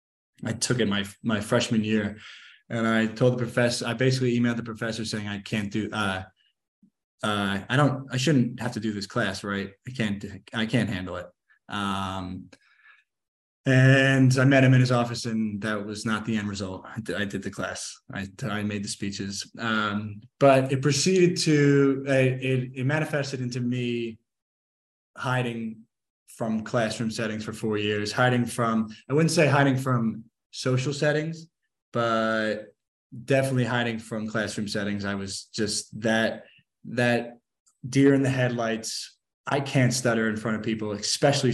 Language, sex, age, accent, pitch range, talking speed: English, male, 20-39, American, 105-130 Hz, 165 wpm